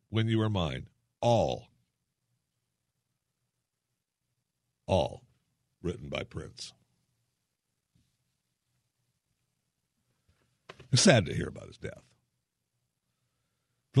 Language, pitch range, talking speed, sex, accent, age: English, 85-125 Hz, 75 wpm, male, American, 60-79